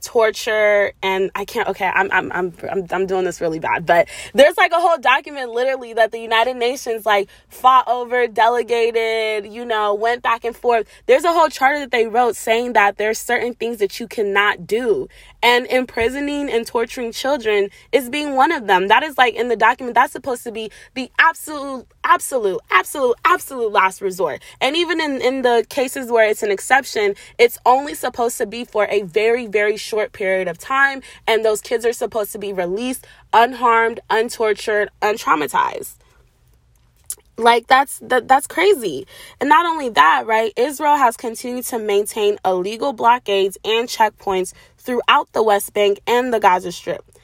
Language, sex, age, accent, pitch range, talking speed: English, female, 20-39, American, 210-260 Hz, 175 wpm